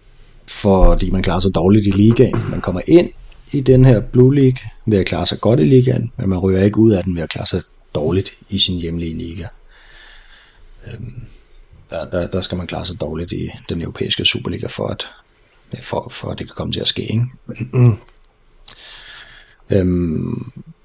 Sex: male